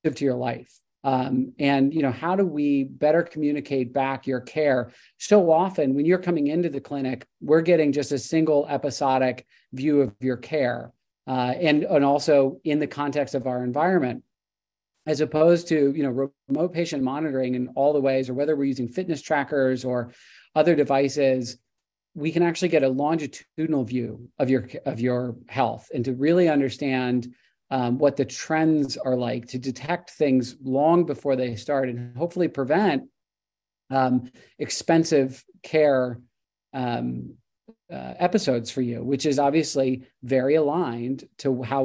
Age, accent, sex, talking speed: 40-59, American, male, 160 wpm